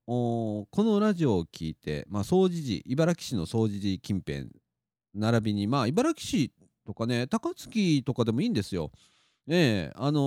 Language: Japanese